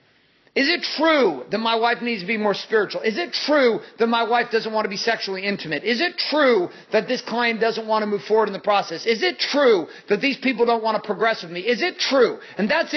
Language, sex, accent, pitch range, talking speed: English, male, American, 205-265 Hz, 250 wpm